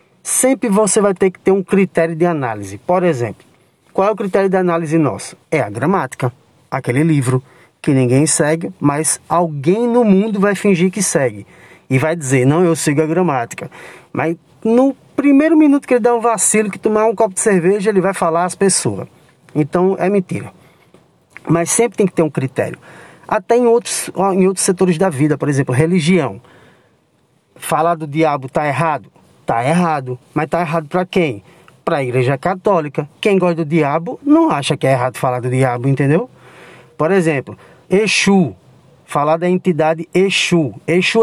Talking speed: 175 wpm